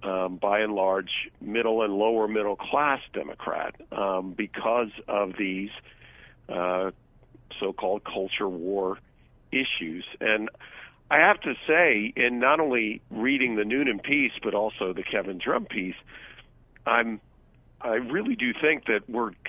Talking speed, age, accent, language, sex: 135 wpm, 50-69, American, English, male